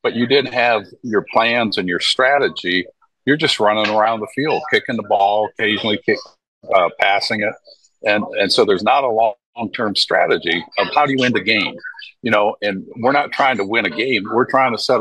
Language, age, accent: English, 50-69, American